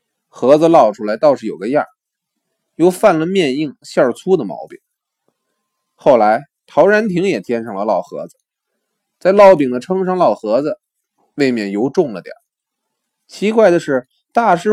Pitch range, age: 130-210 Hz, 20-39